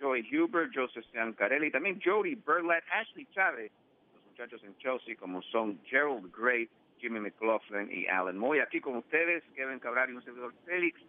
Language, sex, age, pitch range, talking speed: English, male, 50-69, 110-150 Hz, 160 wpm